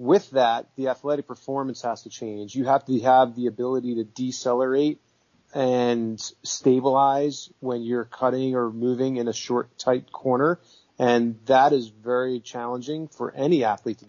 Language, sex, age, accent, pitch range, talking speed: English, male, 30-49, American, 120-130 Hz, 160 wpm